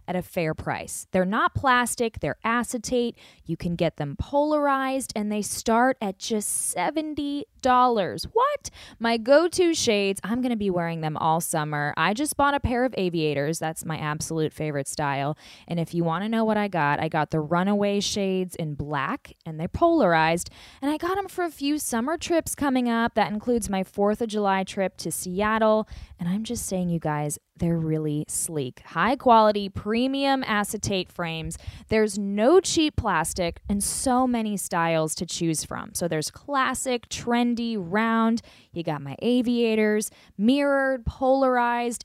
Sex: female